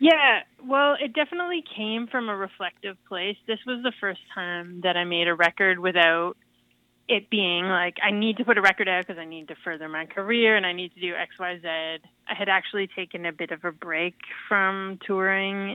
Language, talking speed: English, 205 wpm